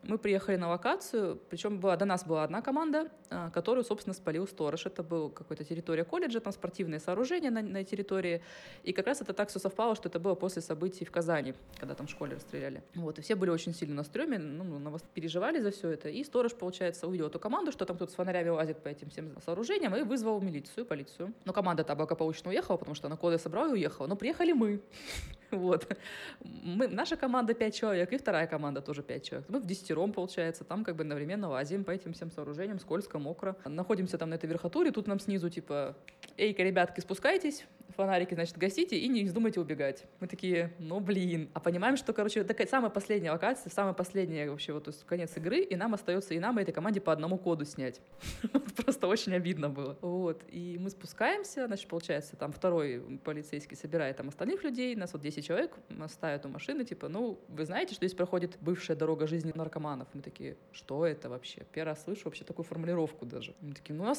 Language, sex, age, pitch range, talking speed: Russian, female, 20-39, 160-210 Hz, 210 wpm